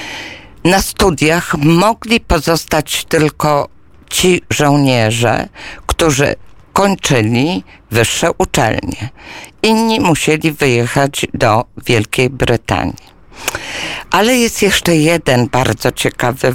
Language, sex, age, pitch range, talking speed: Polish, female, 50-69, 135-180 Hz, 85 wpm